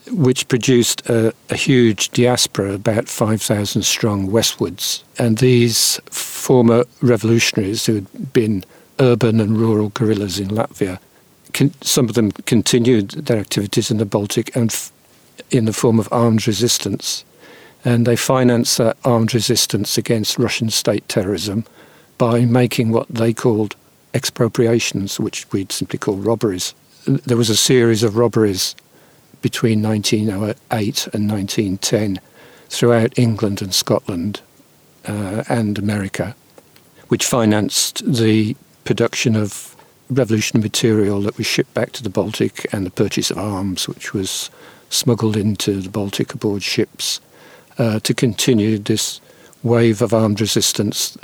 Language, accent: English, British